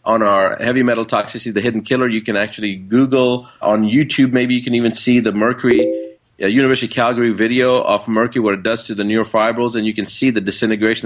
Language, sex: English, male